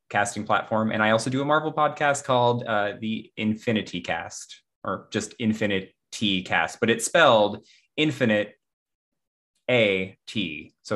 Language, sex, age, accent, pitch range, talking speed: English, male, 20-39, American, 105-170 Hz, 140 wpm